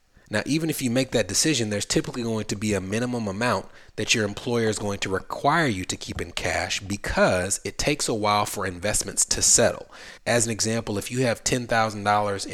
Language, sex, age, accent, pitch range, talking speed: English, male, 30-49, American, 100-125 Hz, 205 wpm